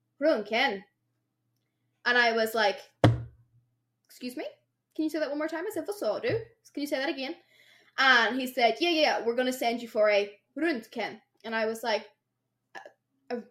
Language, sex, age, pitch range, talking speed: English, female, 10-29, 220-315 Hz, 180 wpm